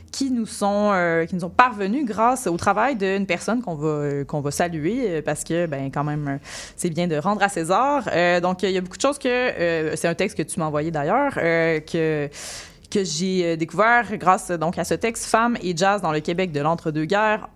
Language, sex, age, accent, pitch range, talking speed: French, female, 20-39, Canadian, 160-210 Hz, 220 wpm